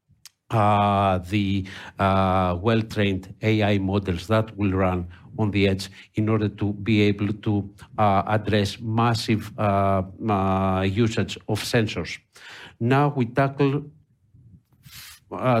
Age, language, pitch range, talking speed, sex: 50-69, English, 100-120 Hz, 115 wpm, male